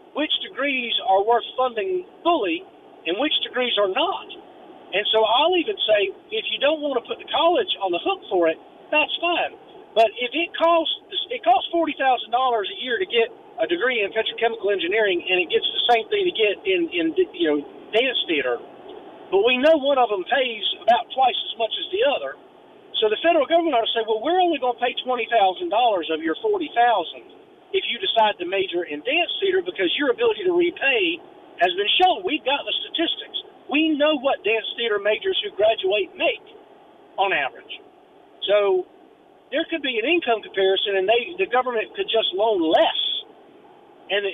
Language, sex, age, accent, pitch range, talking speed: English, male, 50-69, American, 230-380 Hz, 190 wpm